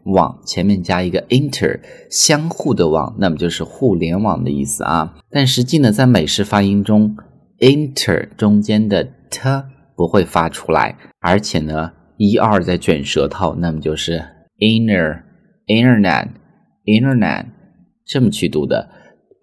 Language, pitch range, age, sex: Chinese, 85-115 Hz, 20-39, male